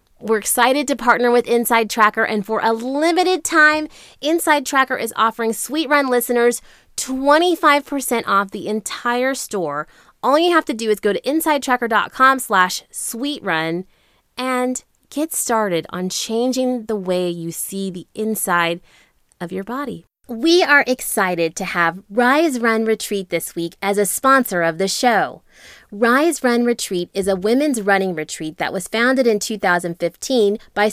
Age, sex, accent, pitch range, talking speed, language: 20-39, female, American, 190-255 Hz, 155 wpm, English